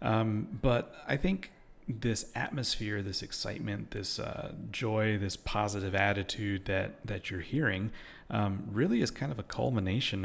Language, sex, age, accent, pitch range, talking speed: English, male, 30-49, American, 95-110 Hz, 145 wpm